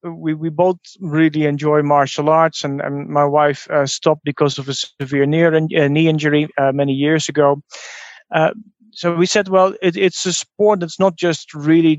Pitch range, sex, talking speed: 145-175 Hz, male, 185 wpm